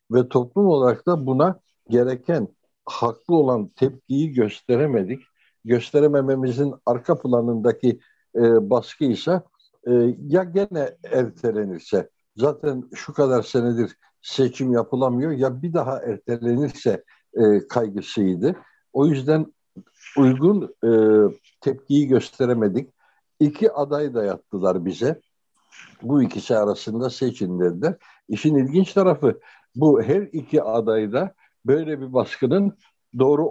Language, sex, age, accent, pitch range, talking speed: Turkish, male, 60-79, native, 120-150 Hz, 100 wpm